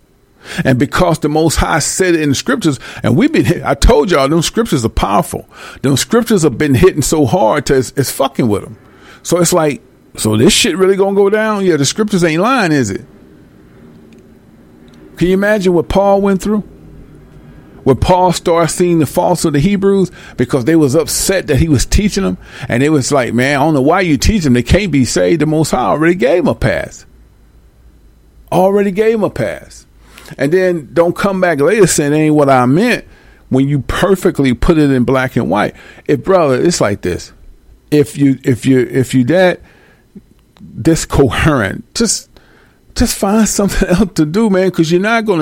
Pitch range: 125-185 Hz